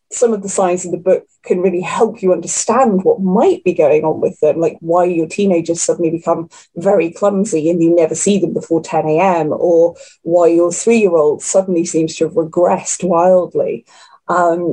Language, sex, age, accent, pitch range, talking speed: English, female, 20-39, British, 170-235 Hz, 185 wpm